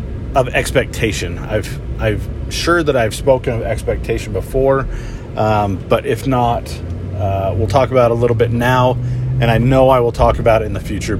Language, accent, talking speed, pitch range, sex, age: English, American, 190 wpm, 80-120 Hz, male, 30-49